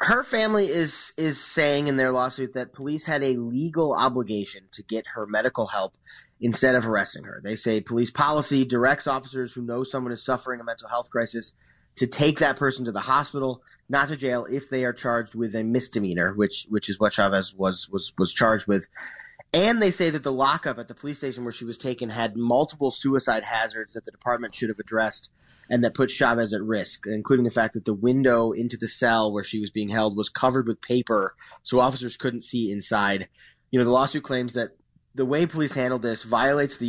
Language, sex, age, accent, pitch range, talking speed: English, male, 30-49, American, 115-135 Hz, 215 wpm